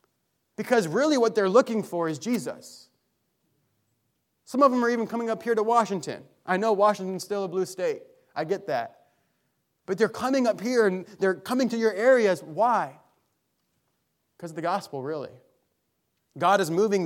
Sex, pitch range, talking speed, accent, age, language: male, 160-200 Hz, 170 wpm, American, 30-49, English